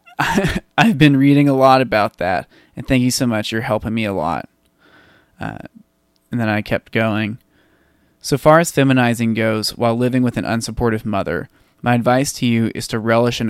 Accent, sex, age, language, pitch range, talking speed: American, male, 20-39, English, 110-135 Hz, 185 wpm